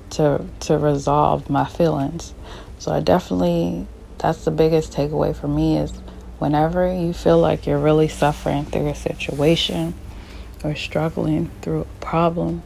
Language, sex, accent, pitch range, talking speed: English, female, American, 135-160 Hz, 140 wpm